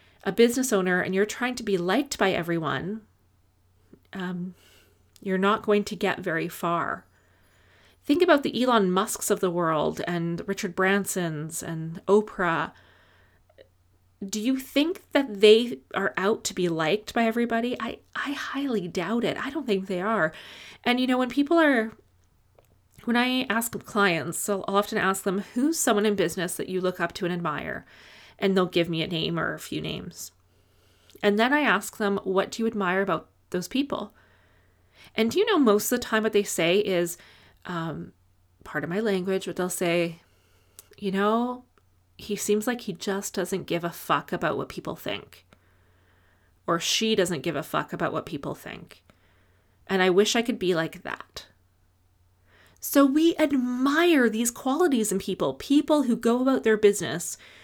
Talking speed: 175 wpm